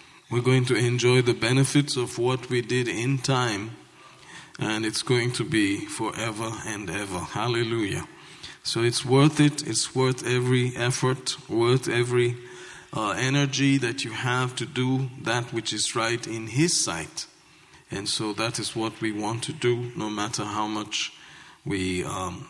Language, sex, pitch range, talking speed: English, male, 110-130 Hz, 160 wpm